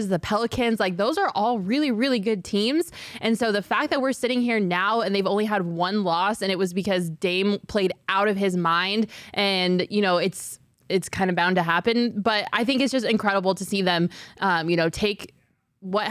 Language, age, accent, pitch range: English, 20-39, American, 175-225 Hz